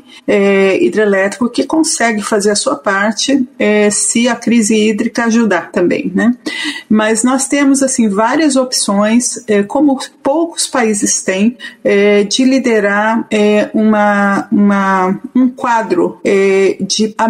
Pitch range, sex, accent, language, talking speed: 210-255 Hz, female, Brazilian, Portuguese, 100 wpm